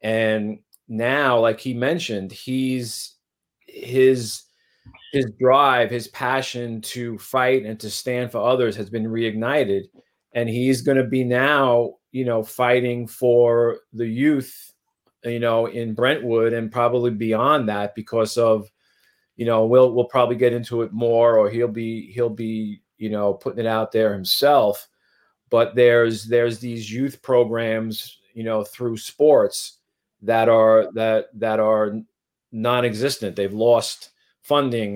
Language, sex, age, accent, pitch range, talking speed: English, male, 40-59, American, 110-125 Hz, 140 wpm